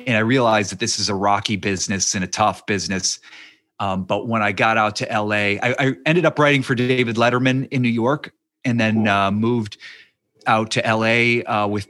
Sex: male